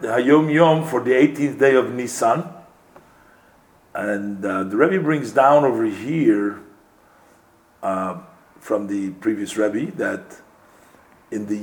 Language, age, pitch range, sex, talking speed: English, 50-69, 130-180 Hz, male, 130 wpm